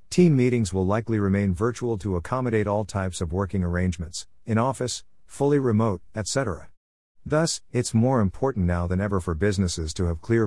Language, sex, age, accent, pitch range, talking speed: English, male, 50-69, American, 85-115 Hz, 170 wpm